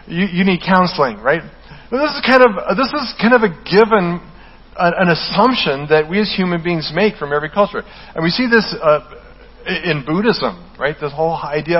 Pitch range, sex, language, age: 150-195 Hz, male, English, 40-59